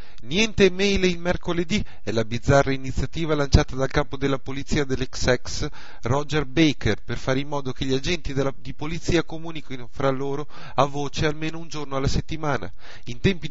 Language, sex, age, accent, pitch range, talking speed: Italian, male, 30-49, native, 130-155 Hz, 175 wpm